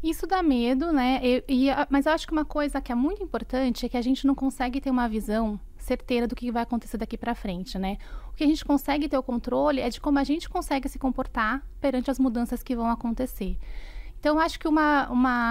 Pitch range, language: 220-275 Hz, Portuguese